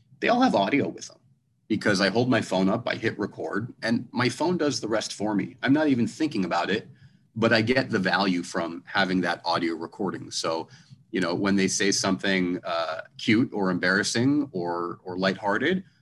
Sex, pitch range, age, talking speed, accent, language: male, 95-130 Hz, 30-49, 200 wpm, American, English